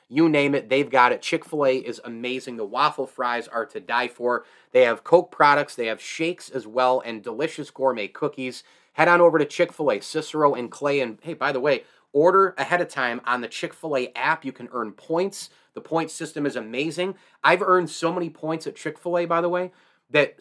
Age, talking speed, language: 30-49, 205 wpm, English